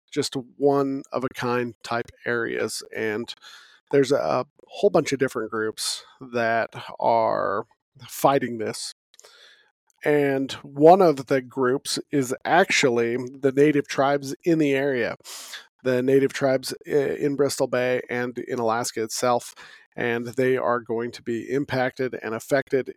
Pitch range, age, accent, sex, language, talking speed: 120-140 Hz, 40-59, American, male, English, 125 wpm